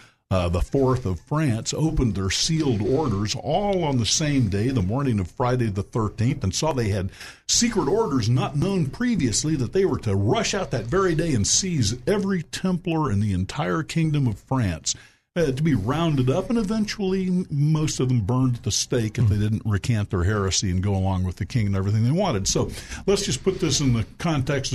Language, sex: English, male